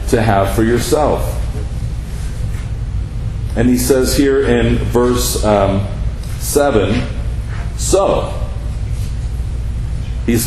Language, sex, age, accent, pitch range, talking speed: English, male, 40-59, American, 110-140 Hz, 80 wpm